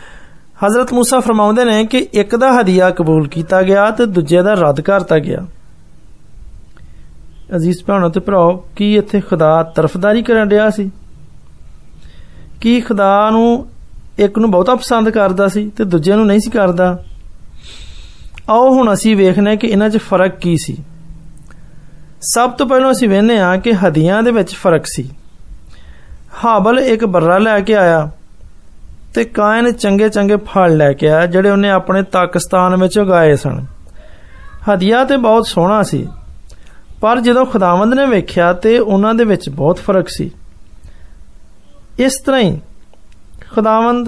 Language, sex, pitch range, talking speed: Hindi, male, 165-220 Hz, 115 wpm